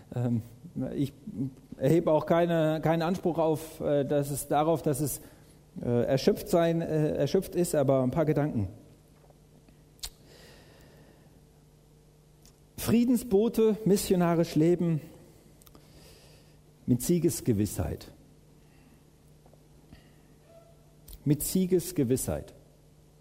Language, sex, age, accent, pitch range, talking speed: English, male, 50-69, German, 135-180 Hz, 70 wpm